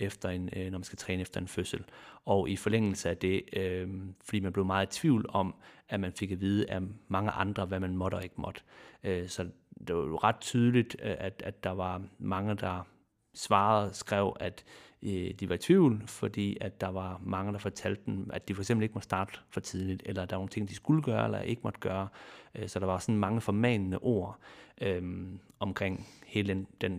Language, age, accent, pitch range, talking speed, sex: Danish, 30-49, native, 95-110 Hz, 220 wpm, male